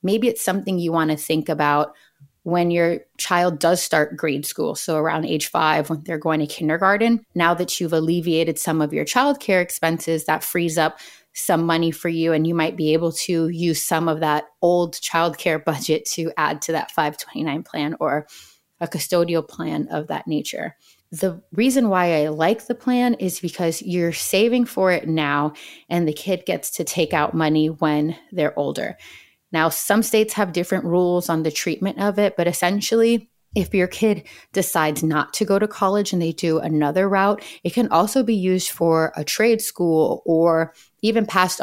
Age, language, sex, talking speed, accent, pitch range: 20-39, English, female, 185 wpm, American, 160-185 Hz